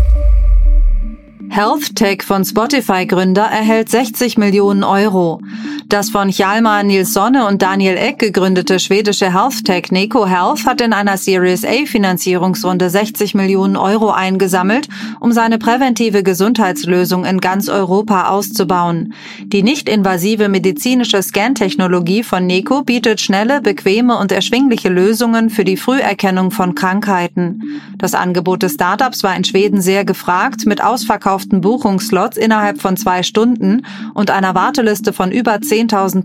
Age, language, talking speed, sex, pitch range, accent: 30-49, German, 125 wpm, female, 190-225 Hz, German